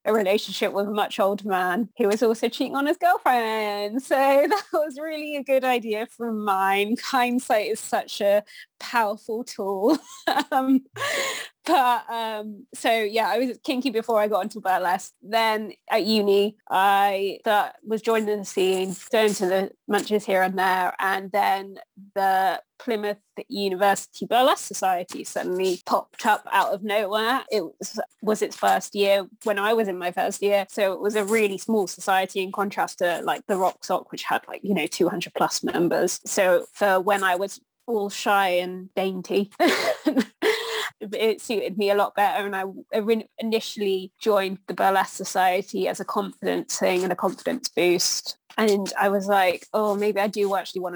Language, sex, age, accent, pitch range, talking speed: English, female, 20-39, British, 195-240 Hz, 170 wpm